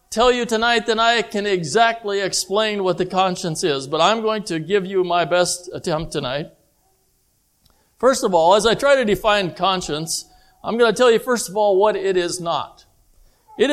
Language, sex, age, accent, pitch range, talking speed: English, male, 60-79, American, 185-245 Hz, 190 wpm